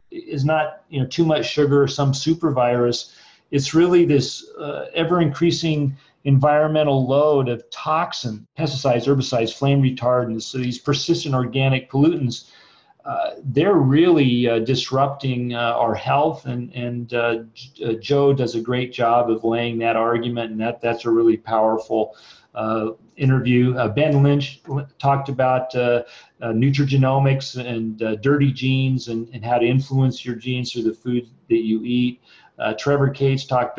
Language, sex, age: English, male, 40-59